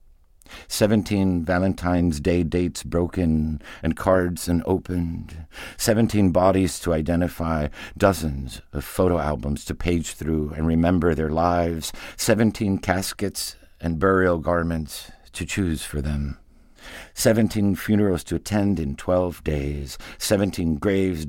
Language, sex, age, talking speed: English, male, 60-79, 115 wpm